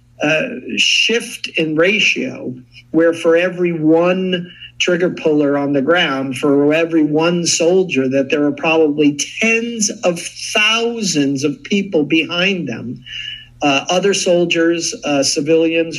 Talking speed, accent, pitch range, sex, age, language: 125 wpm, American, 145-180 Hz, male, 50-69, English